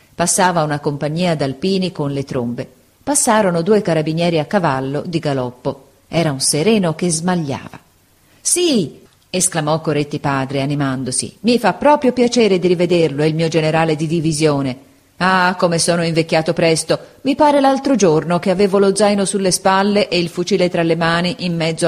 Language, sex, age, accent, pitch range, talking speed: Italian, female, 40-59, native, 145-190 Hz, 160 wpm